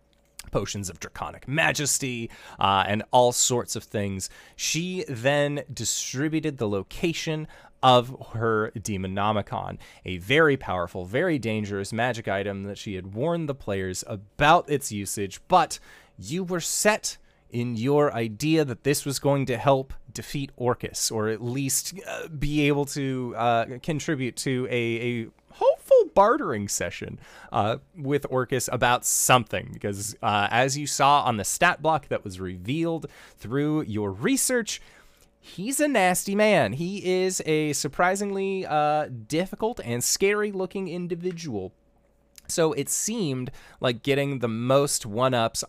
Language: English